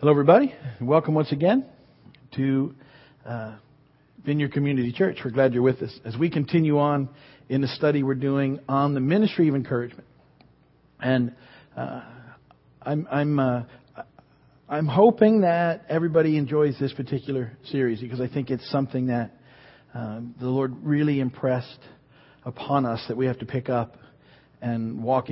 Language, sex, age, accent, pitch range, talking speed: English, male, 50-69, American, 125-150 Hz, 150 wpm